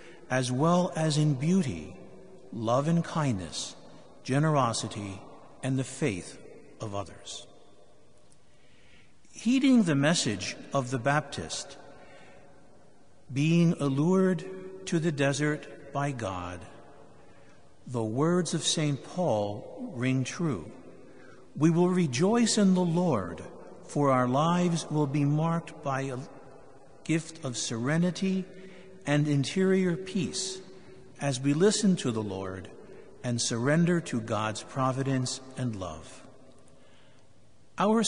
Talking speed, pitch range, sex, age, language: 105 wpm, 120-170 Hz, male, 60-79, English